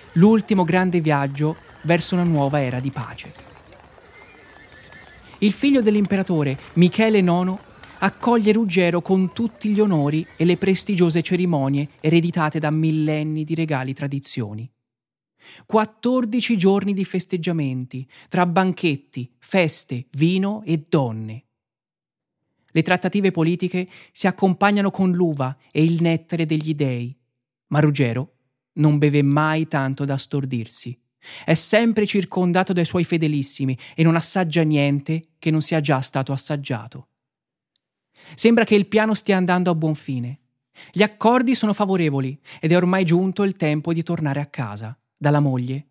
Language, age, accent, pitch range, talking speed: Italian, 30-49, native, 140-185 Hz, 130 wpm